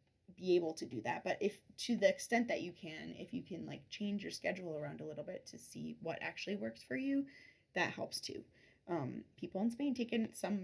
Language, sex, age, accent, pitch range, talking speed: Spanish, female, 20-39, American, 195-245 Hz, 230 wpm